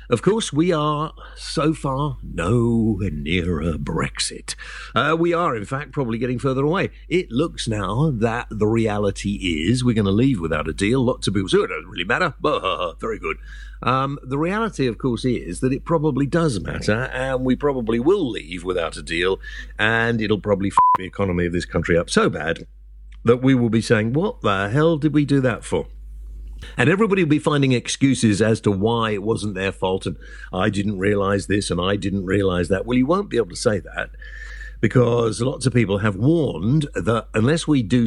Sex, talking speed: male, 200 wpm